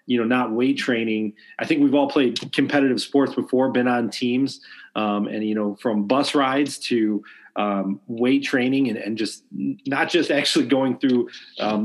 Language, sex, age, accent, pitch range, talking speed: English, male, 30-49, American, 105-125 Hz, 180 wpm